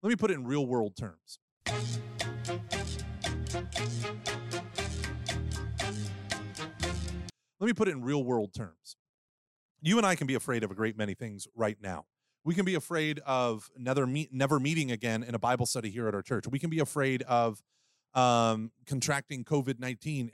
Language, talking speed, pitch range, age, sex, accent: English, 155 wpm, 115-155 Hz, 30-49, male, American